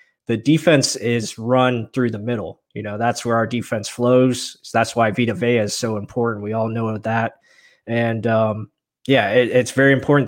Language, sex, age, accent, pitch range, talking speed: English, male, 20-39, American, 110-125 Hz, 180 wpm